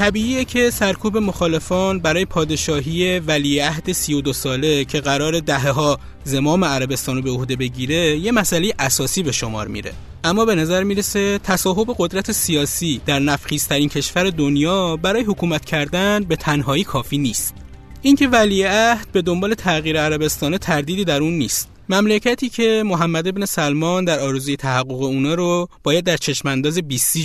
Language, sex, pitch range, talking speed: Persian, male, 145-190 Hz, 155 wpm